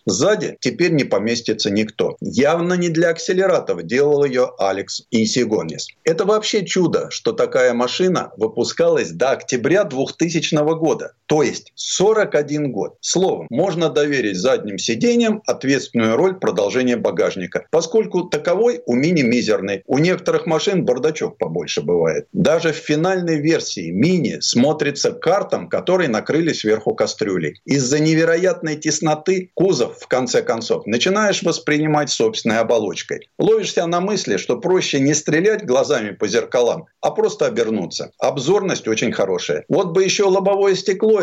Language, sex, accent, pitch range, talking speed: Russian, male, native, 130-200 Hz, 130 wpm